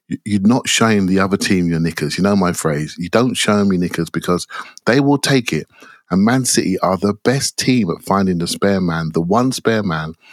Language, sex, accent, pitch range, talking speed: English, male, British, 90-135 Hz, 220 wpm